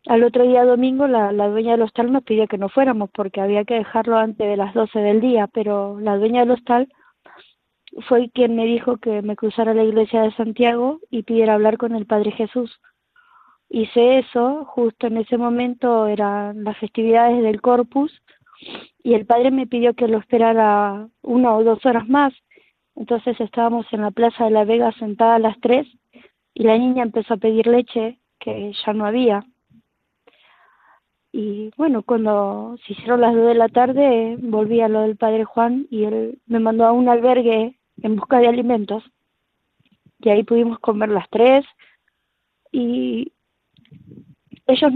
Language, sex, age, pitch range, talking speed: Spanish, female, 20-39, 220-245 Hz, 170 wpm